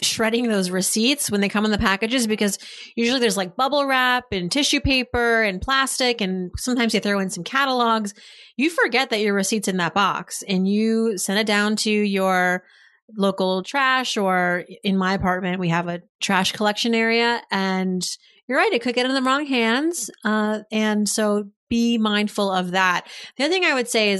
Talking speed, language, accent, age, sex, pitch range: 195 wpm, English, American, 30-49, female, 195-250 Hz